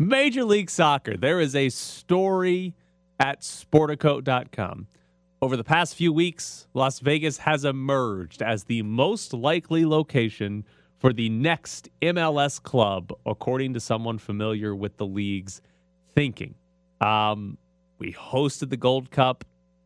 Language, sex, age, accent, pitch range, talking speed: English, male, 30-49, American, 105-140 Hz, 125 wpm